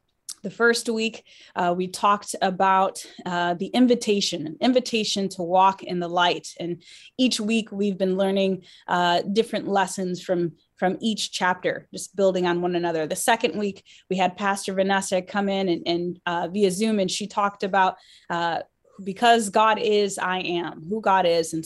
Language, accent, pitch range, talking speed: English, American, 175-210 Hz, 170 wpm